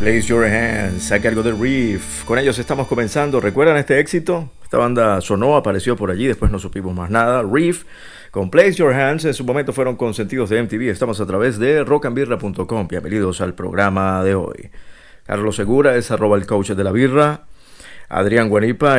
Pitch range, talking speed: 100-135 Hz, 185 wpm